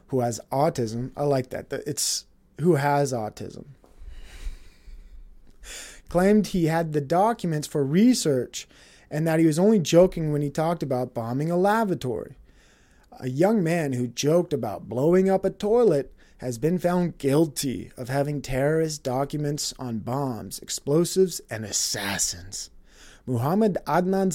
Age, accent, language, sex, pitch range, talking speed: 30-49, American, English, male, 135-185 Hz, 135 wpm